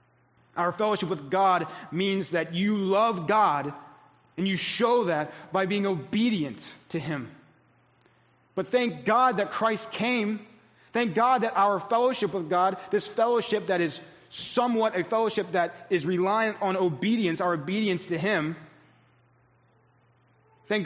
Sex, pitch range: male, 155-195 Hz